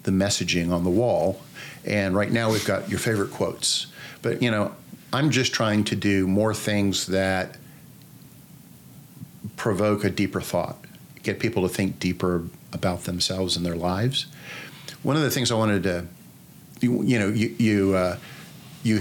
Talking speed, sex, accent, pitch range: 165 wpm, male, American, 95-120 Hz